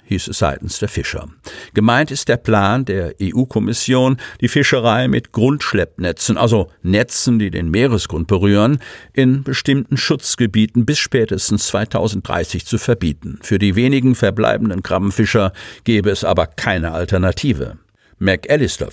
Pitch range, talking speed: 95-120 Hz, 125 wpm